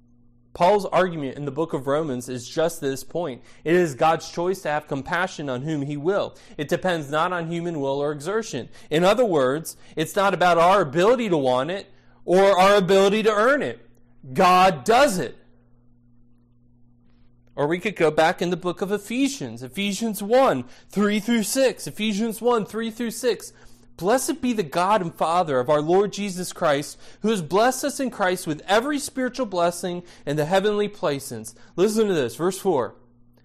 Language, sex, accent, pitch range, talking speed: English, male, American, 125-205 Hz, 170 wpm